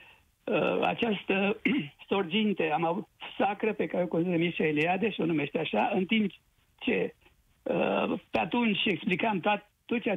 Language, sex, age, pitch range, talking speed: Romanian, male, 60-79, 170-215 Hz, 150 wpm